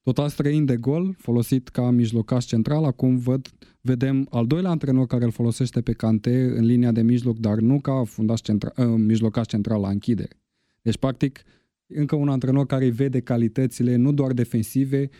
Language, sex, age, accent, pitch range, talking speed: Romanian, male, 20-39, native, 105-125 Hz, 160 wpm